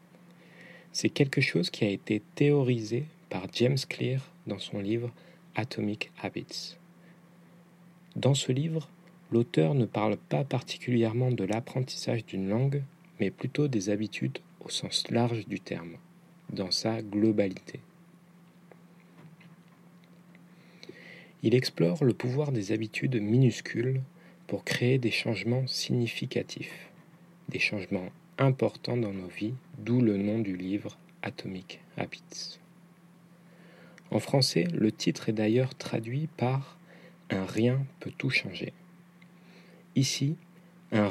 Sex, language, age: male, French, 40-59